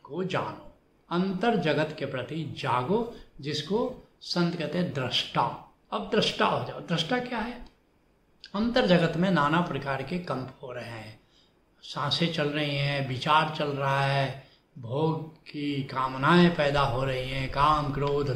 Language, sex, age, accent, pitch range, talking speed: Hindi, male, 70-89, native, 135-175 Hz, 150 wpm